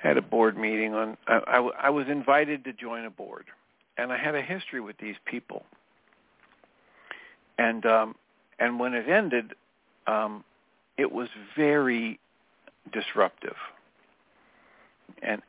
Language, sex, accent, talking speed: English, male, American, 135 wpm